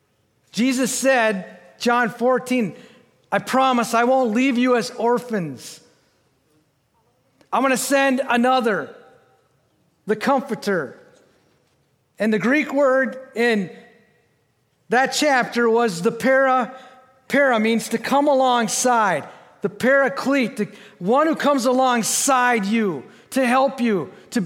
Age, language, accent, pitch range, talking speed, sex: 50-69, English, American, 220-265 Hz, 115 wpm, male